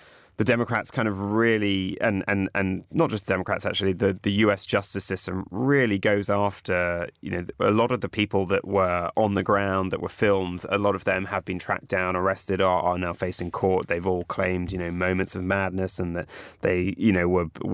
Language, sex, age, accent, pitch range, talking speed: English, male, 20-39, British, 90-100 Hz, 215 wpm